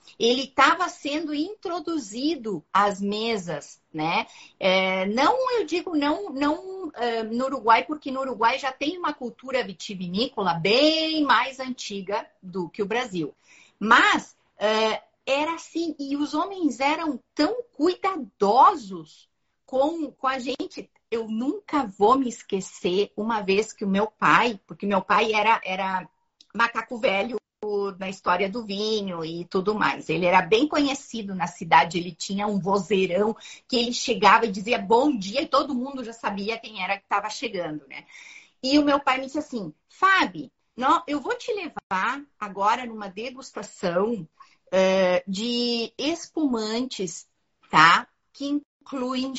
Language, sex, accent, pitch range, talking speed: Portuguese, female, Brazilian, 200-285 Hz, 140 wpm